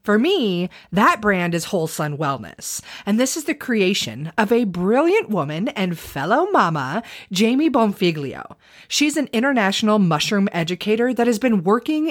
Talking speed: 155 wpm